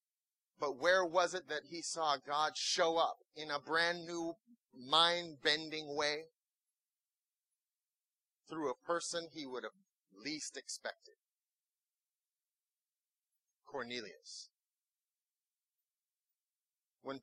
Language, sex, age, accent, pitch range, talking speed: English, male, 30-49, American, 140-175 Hz, 90 wpm